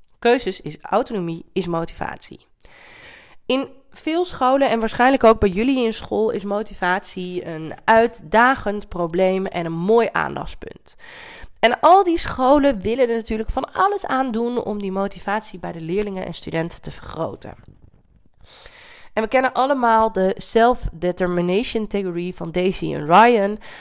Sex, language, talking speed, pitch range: female, Dutch, 140 wpm, 175-245 Hz